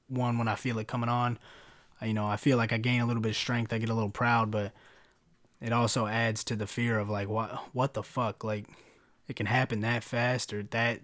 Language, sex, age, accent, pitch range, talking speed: English, male, 20-39, American, 105-120 Hz, 245 wpm